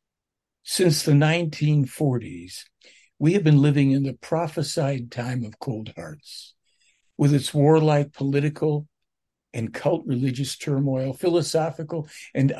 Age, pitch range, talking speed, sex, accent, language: 60-79, 130-155 Hz, 115 wpm, male, American, English